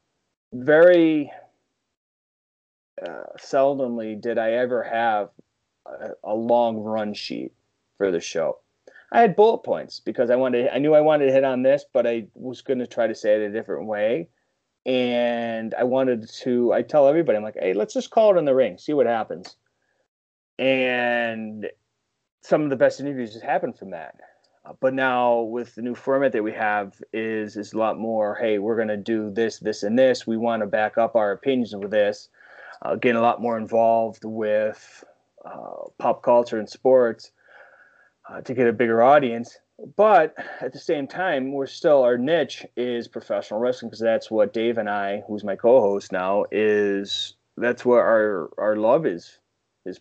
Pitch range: 110-125 Hz